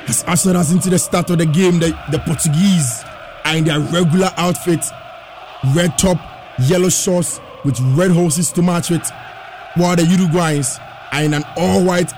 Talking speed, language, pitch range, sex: 170 wpm, English, 160-195 Hz, male